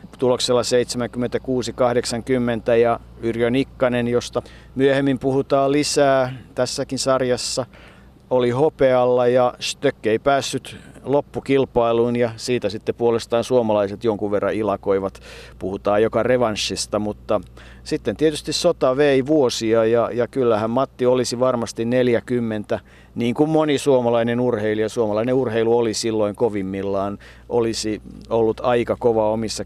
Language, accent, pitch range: Finnish, native, 110-130 Hz